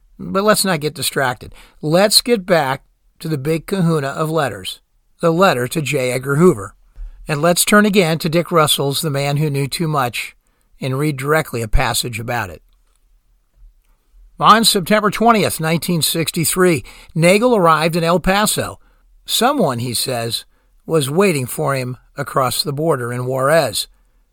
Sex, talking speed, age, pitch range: male, 150 wpm, 50-69, 135-180 Hz